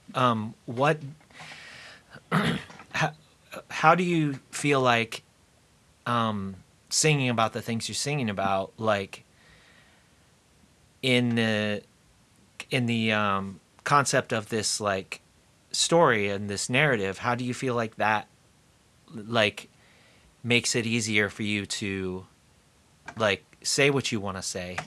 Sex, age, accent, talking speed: male, 30-49, American, 120 wpm